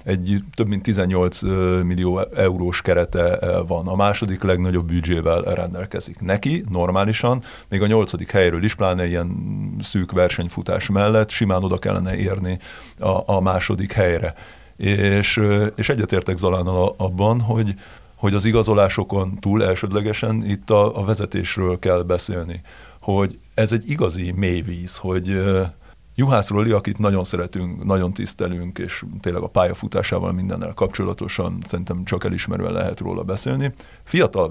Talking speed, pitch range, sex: 130 wpm, 90-110 Hz, male